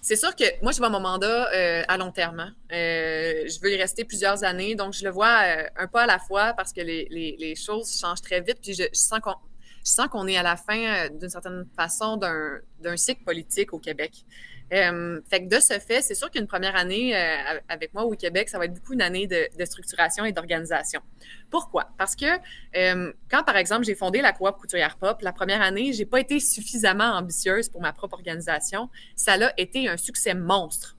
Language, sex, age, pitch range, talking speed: French, female, 20-39, 175-225 Hz, 220 wpm